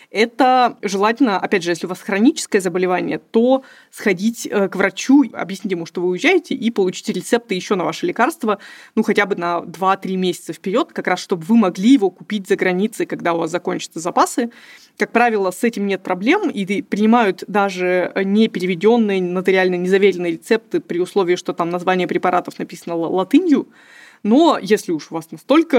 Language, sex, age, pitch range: Russian, female, 20-39, 185-235 Hz